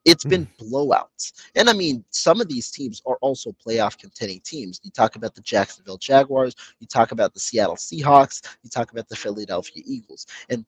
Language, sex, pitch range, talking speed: English, male, 120-150 Hz, 185 wpm